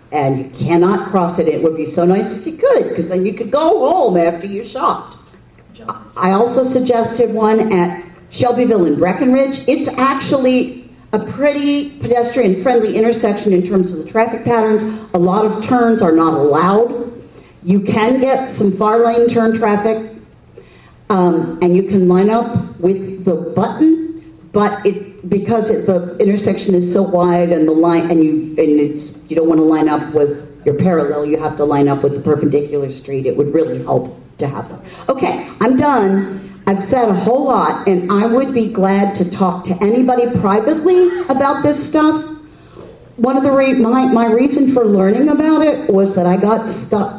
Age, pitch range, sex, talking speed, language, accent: 50-69, 175-240 Hz, female, 180 wpm, English, American